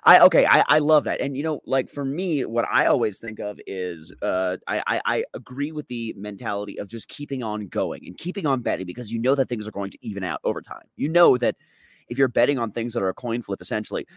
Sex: male